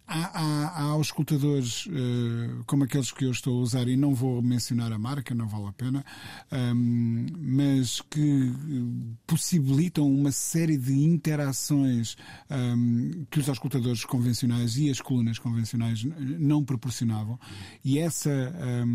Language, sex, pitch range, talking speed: Portuguese, male, 120-140 Hz, 125 wpm